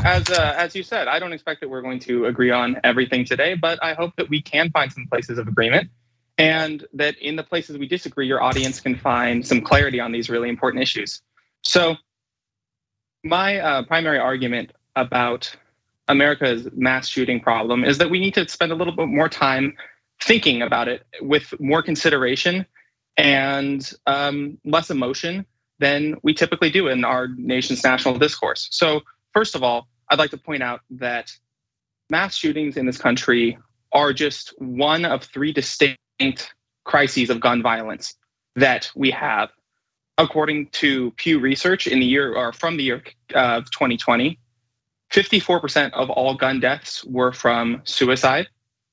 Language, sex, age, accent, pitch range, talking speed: English, male, 20-39, American, 125-155 Hz, 165 wpm